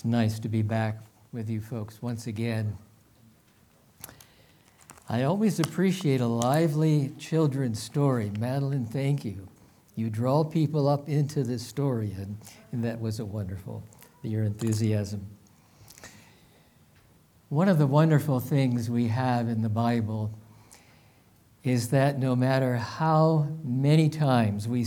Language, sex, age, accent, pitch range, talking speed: English, male, 60-79, American, 115-145 Hz, 125 wpm